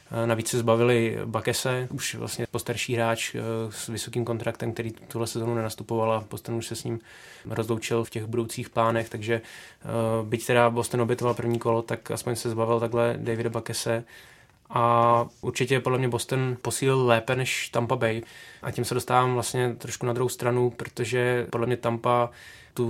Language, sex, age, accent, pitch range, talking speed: Czech, male, 20-39, native, 115-120 Hz, 170 wpm